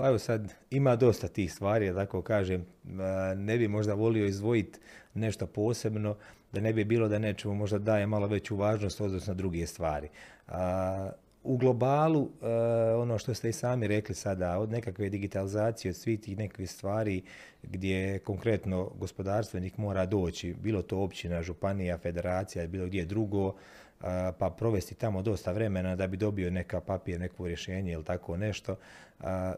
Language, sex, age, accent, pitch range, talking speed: Croatian, male, 30-49, native, 95-110 Hz, 155 wpm